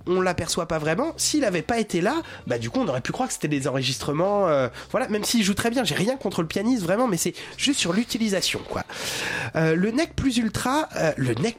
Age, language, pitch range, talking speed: 30-49, French, 130-215 Hz, 245 wpm